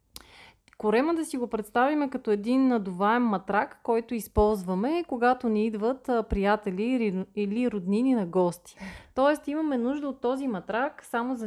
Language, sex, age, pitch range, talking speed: Bulgarian, female, 30-49, 200-255 Hz, 140 wpm